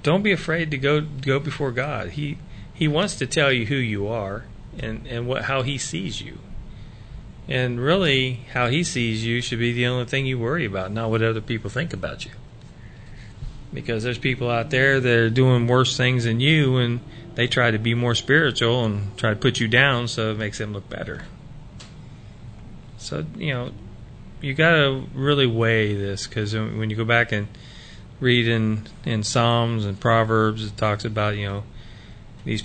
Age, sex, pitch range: 30-49, male, 105-125 Hz